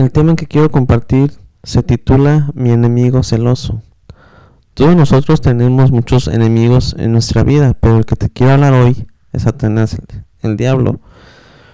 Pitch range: 115-135 Hz